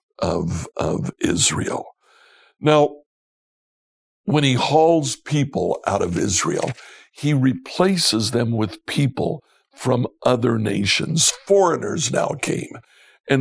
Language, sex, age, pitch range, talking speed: English, male, 60-79, 115-145 Hz, 105 wpm